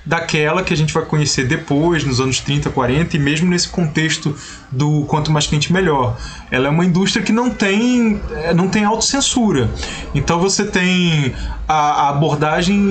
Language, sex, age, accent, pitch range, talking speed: Portuguese, male, 20-39, Brazilian, 140-185 Hz, 160 wpm